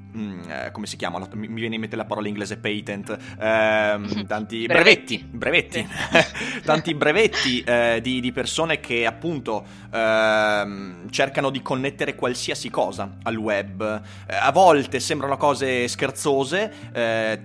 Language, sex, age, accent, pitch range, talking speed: Italian, male, 30-49, native, 105-135 Hz, 135 wpm